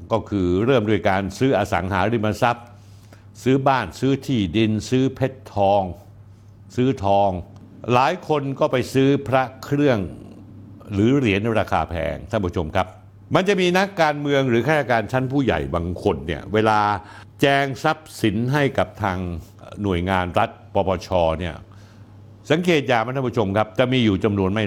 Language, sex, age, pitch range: Thai, male, 60-79, 100-135 Hz